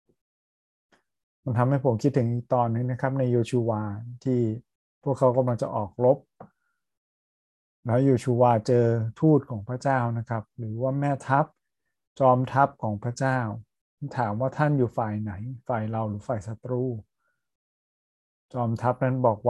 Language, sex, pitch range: Thai, male, 110-125 Hz